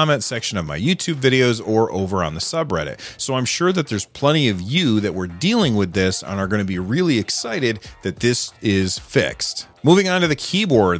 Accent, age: American, 30-49